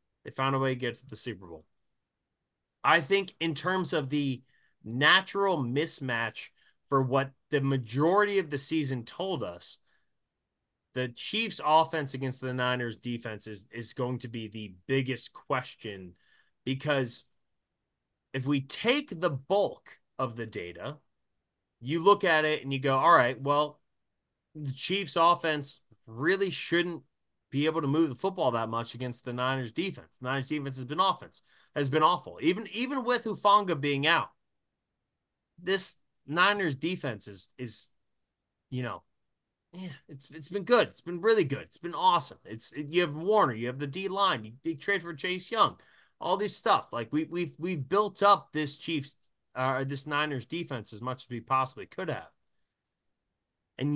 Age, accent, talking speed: 20-39, American, 165 wpm